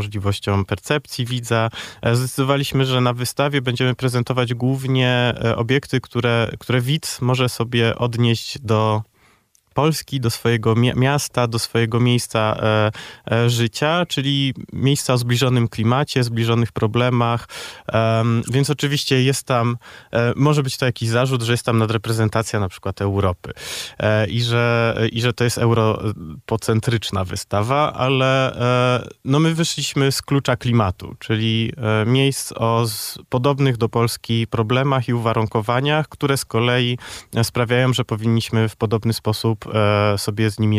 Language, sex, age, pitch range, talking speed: Polish, male, 20-39, 110-125 Hz, 120 wpm